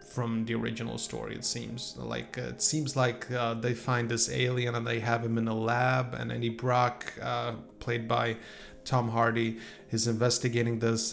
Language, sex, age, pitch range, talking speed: English, male, 30-49, 115-135 Hz, 180 wpm